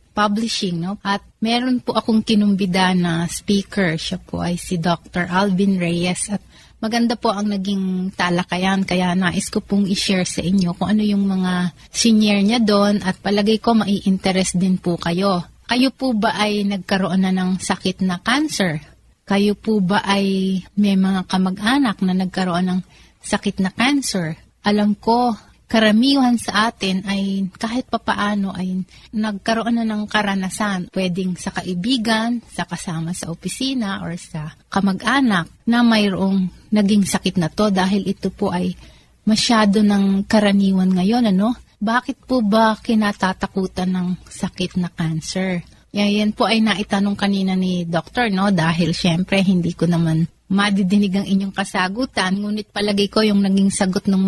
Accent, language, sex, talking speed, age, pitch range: native, Filipino, female, 150 wpm, 30-49, 185-215 Hz